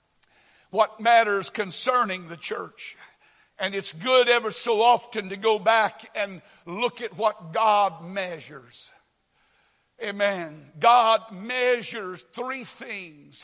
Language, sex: English, male